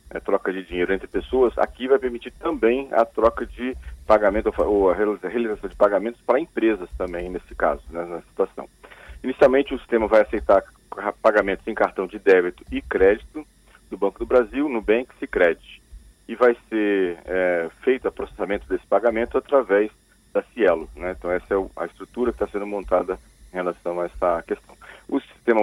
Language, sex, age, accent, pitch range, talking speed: Portuguese, male, 40-59, Brazilian, 95-120 Hz, 180 wpm